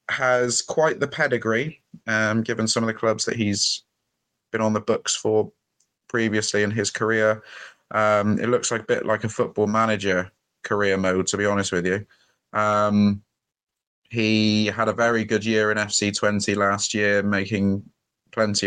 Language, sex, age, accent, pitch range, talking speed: English, male, 20-39, British, 95-110 Hz, 160 wpm